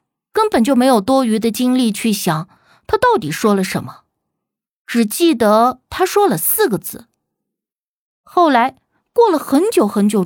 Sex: female